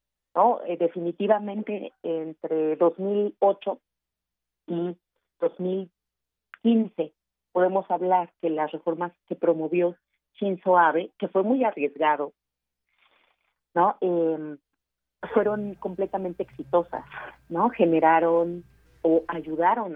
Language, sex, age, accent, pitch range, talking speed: Spanish, female, 40-59, Mexican, 150-180 Hz, 85 wpm